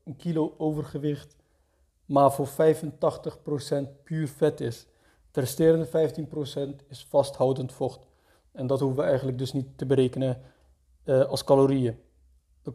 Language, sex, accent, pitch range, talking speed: Dutch, male, Dutch, 130-150 Hz, 130 wpm